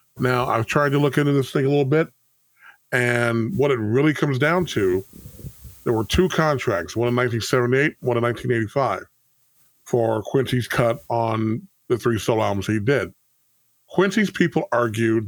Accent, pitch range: American, 120-140 Hz